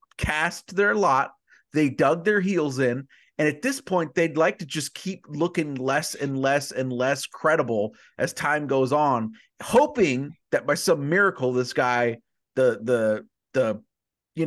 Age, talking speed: 30-49, 160 wpm